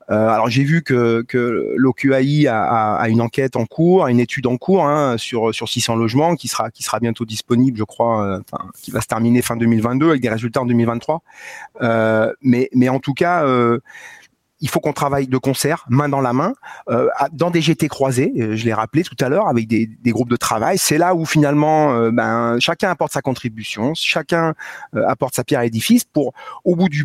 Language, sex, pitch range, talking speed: French, male, 120-155 Hz, 220 wpm